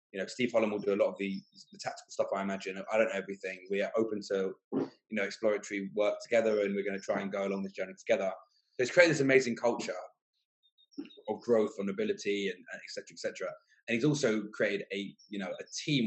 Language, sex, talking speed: English, male, 235 wpm